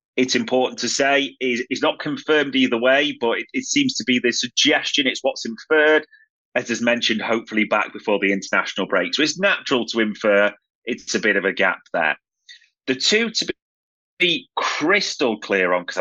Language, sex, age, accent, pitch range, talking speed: English, male, 30-49, British, 105-155 Hz, 180 wpm